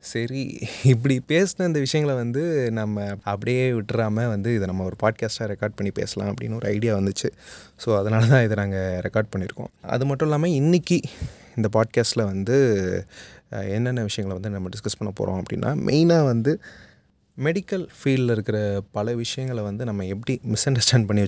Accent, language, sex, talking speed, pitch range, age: native, Tamil, male, 160 wpm, 100-125 Hz, 20-39